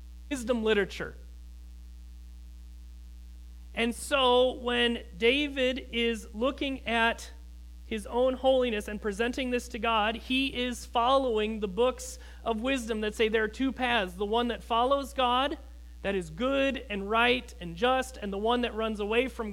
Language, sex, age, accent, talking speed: English, male, 40-59, American, 150 wpm